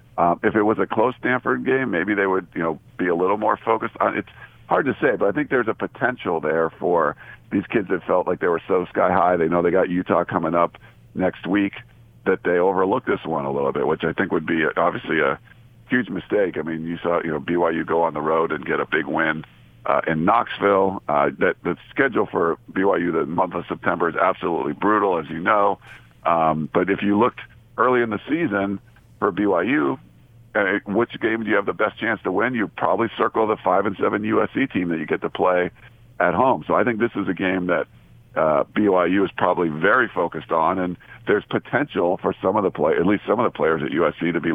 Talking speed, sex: 230 wpm, male